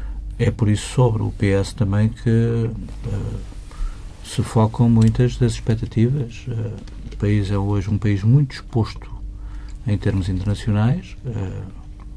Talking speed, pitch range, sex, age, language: 135 wpm, 95-115 Hz, male, 50-69, Portuguese